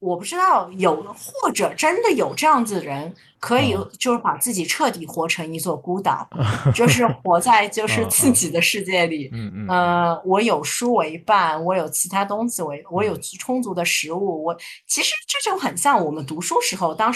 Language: Chinese